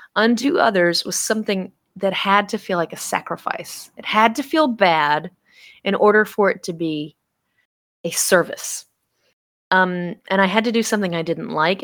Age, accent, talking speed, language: 30-49, American, 170 wpm, English